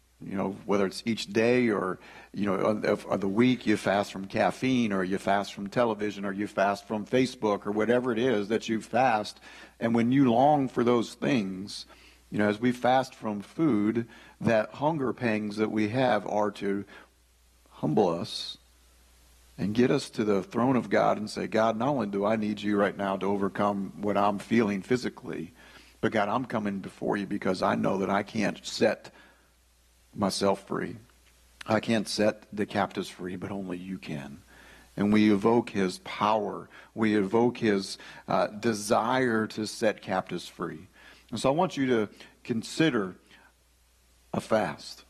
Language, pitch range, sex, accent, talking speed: English, 95-115 Hz, male, American, 175 wpm